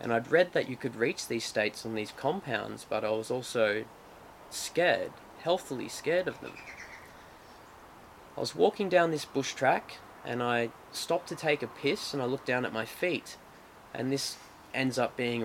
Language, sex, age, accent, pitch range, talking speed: English, male, 20-39, Australian, 115-135 Hz, 185 wpm